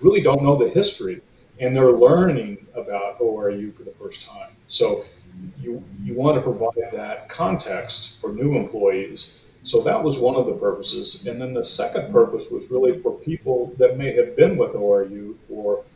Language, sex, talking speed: English, male, 180 wpm